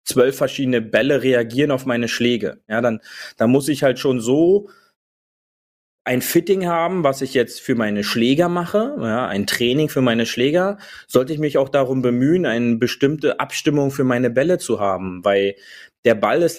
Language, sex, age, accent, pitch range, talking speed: German, male, 30-49, German, 120-155 Hz, 175 wpm